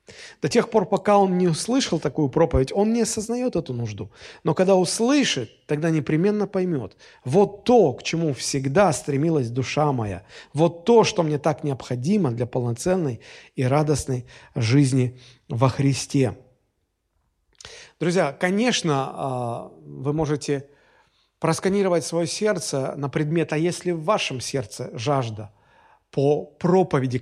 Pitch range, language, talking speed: 135-185 Hz, Russian, 130 wpm